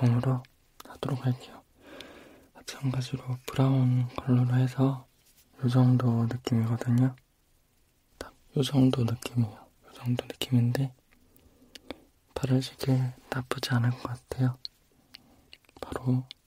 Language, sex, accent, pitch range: Korean, male, native, 120-135 Hz